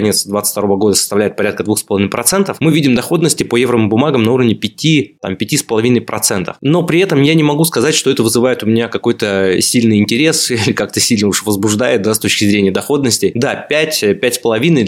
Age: 20-39